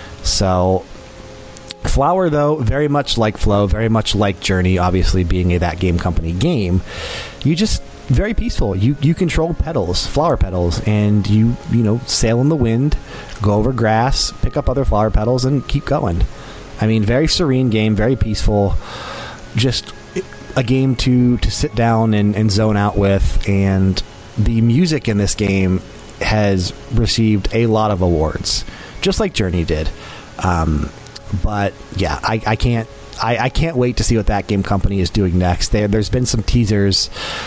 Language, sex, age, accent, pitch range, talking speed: English, male, 30-49, American, 95-125 Hz, 170 wpm